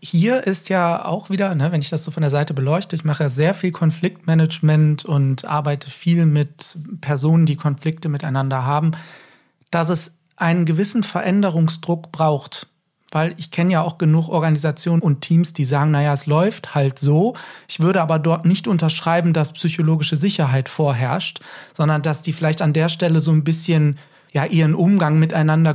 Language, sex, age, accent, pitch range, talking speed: German, male, 40-59, German, 150-170 Hz, 175 wpm